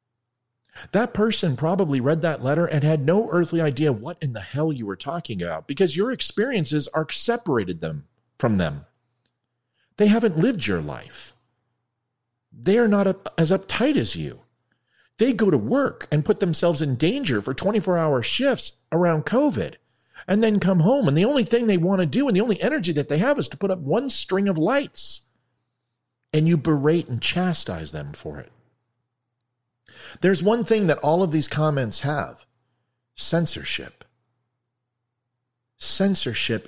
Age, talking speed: 40-59, 160 wpm